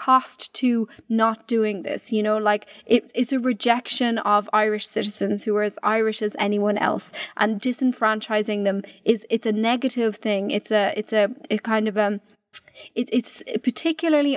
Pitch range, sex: 215-250 Hz, female